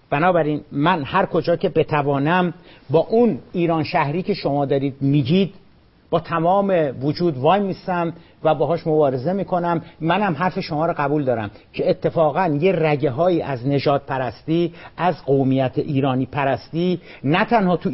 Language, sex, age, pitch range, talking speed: Persian, male, 50-69, 160-205 Hz, 150 wpm